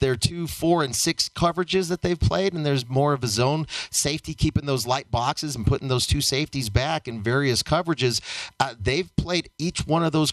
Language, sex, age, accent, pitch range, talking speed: English, male, 40-59, American, 130-160 Hz, 215 wpm